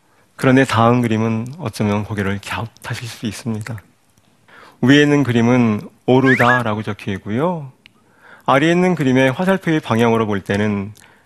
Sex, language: male, Korean